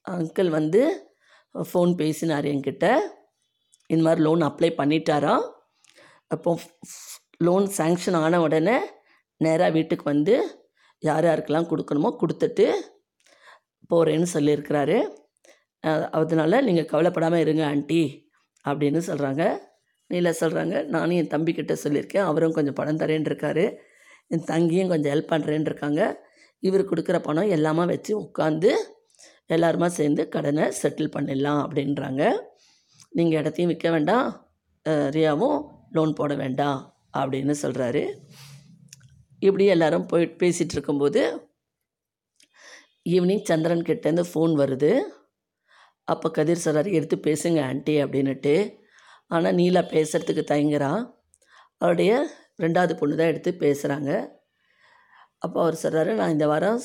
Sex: female